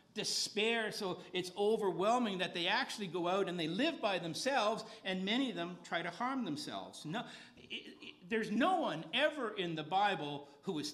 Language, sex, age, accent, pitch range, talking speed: English, male, 50-69, American, 135-215 Hz, 185 wpm